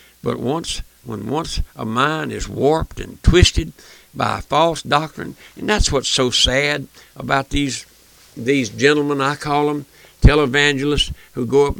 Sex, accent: male, American